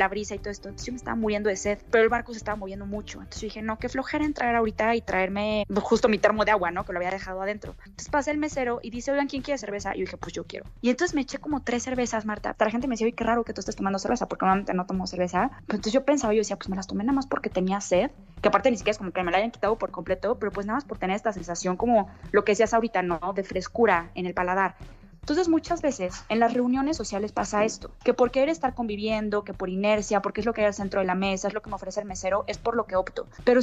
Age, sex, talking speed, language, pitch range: 20-39, female, 305 wpm, Spanish, 190-235 Hz